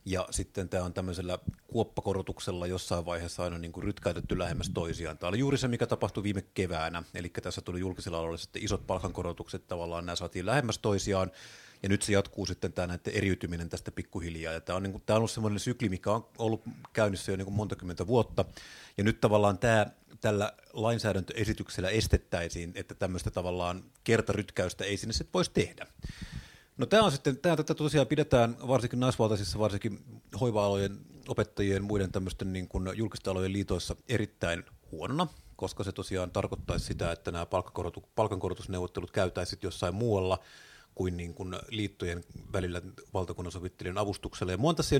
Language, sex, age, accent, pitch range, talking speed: Finnish, male, 30-49, native, 90-110 Hz, 165 wpm